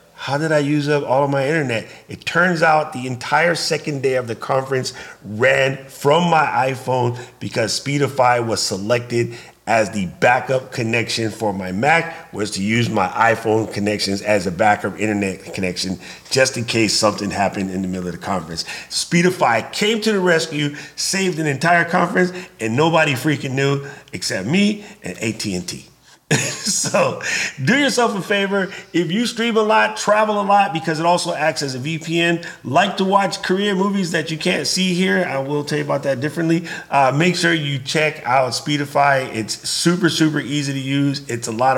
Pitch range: 115-170 Hz